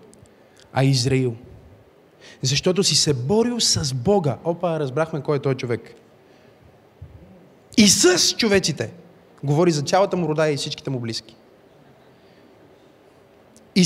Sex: male